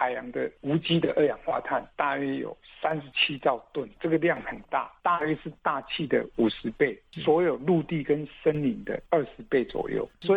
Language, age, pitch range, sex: Chinese, 60-79, 135-185 Hz, male